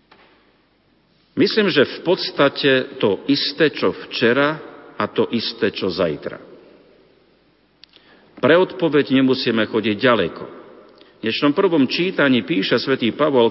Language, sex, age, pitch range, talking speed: Slovak, male, 50-69, 110-155 Hz, 110 wpm